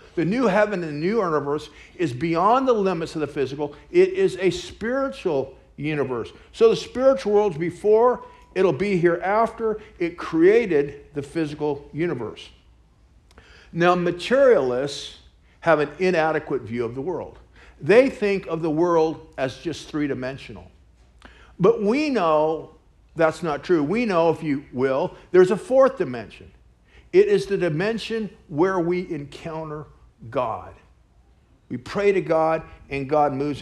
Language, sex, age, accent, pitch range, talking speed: English, male, 50-69, American, 135-195 Hz, 140 wpm